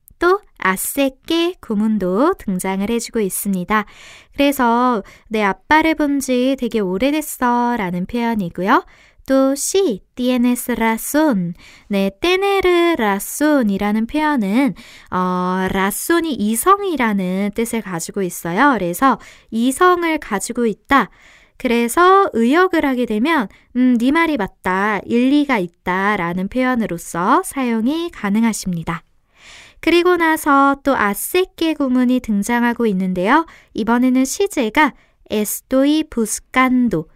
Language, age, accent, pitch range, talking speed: English, 20-39, Korean, 200-295 Hz, 90 wpm